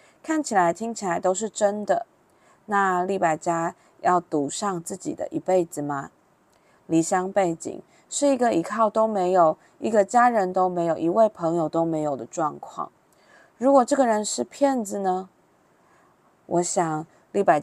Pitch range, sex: 165-225 Hz, female